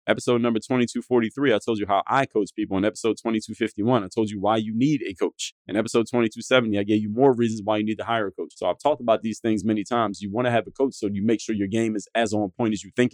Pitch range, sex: 95-115 Hz, male